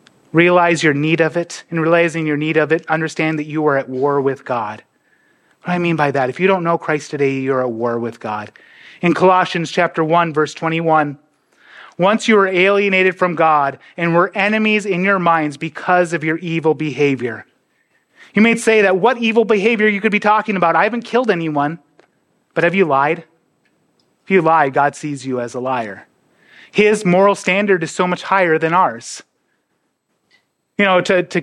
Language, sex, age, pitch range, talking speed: English, male, 30-49, 145-180 Hz, 190 wpm